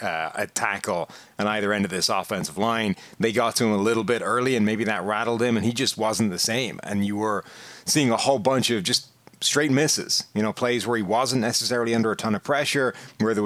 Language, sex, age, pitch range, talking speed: English, male, 30-49, 110-125 Hz, 240 wpm